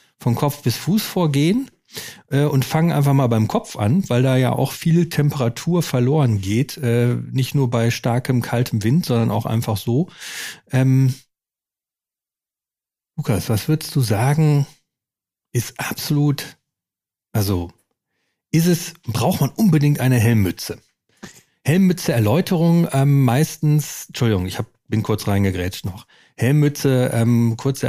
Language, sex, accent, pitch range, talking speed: German, male, German, 115-145 Hz, 135 wpm